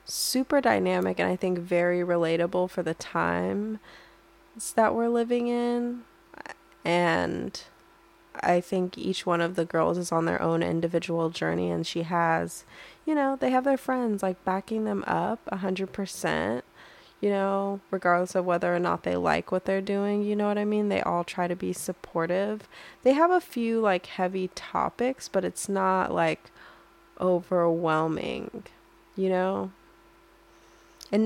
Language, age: English, 20-39